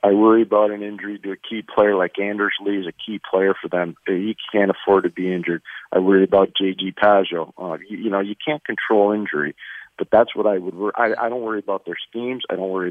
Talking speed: 240 wpm